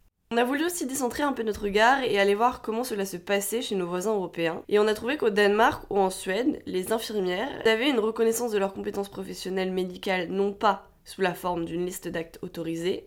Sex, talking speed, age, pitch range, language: female, 220 wpm, 20-39, 185-220 Hz, French